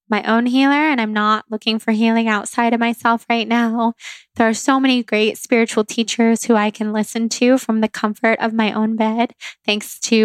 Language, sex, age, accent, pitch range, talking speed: English, female, 20-39, American, 220-245 Hz, 205 wpm